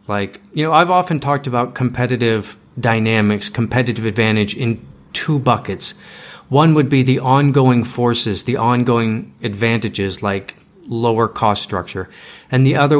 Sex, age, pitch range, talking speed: male, 40-59, 105-135 Hz, 140 wpm